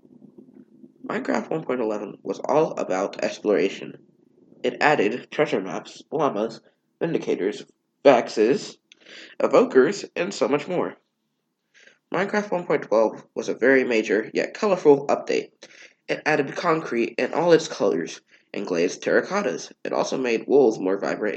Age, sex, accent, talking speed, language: 20-39, male, American, 120 wpm, English